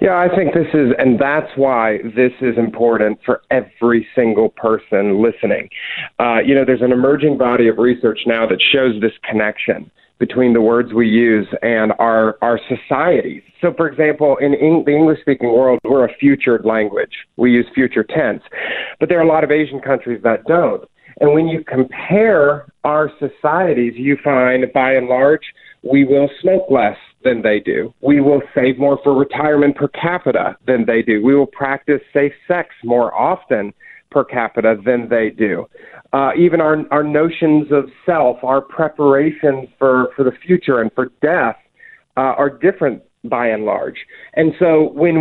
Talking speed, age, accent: 175 wpm, 40-59, American